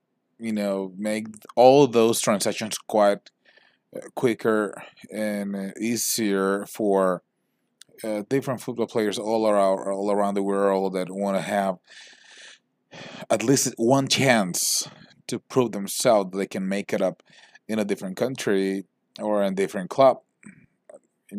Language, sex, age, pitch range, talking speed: English, male, 30-49, 100-115 Hz, 145 wpm